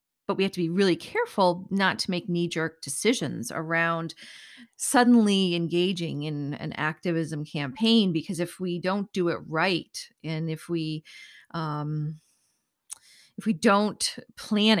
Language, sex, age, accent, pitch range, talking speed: English, female, 40-59, American, 155-190 Hz, 140 wpm